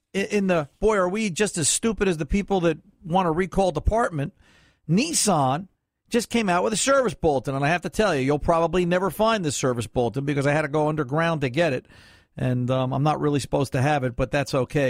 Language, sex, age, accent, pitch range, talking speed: English, male, 50-69, American, 140-195 Hz, 235 wpm